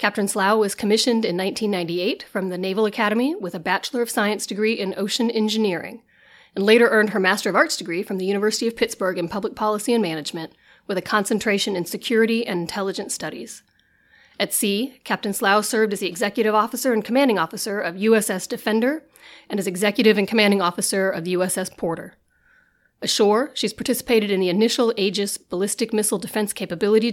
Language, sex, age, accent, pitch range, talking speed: English, female, 30-49, American, 195-230 Hz, 175 wpm